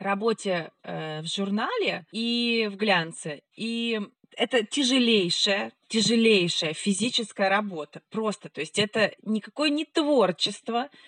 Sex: female